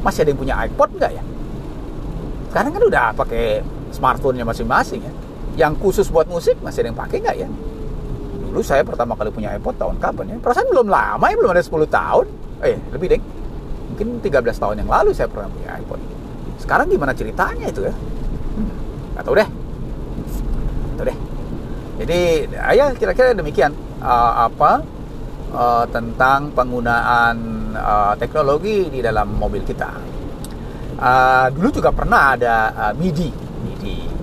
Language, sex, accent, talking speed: Indonesian, male, native, 155 wpm